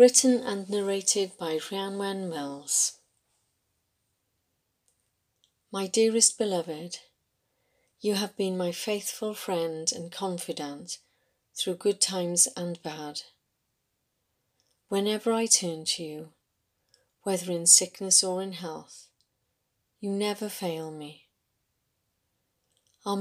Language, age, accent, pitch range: English, 40-59, British, 145-195 Hz